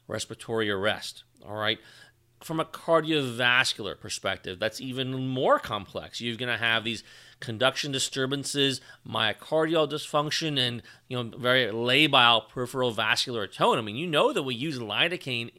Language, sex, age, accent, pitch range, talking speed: English, male, 30-49, American, 115-140 Hz, 140 wpm